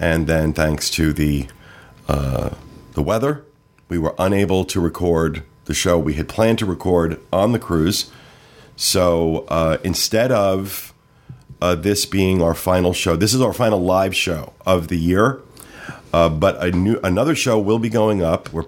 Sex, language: male, English